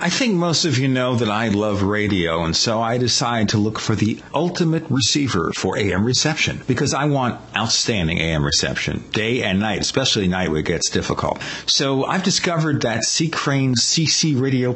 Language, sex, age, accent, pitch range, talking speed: English, male, 50-69, American, 105-150 Hz, 185 wpm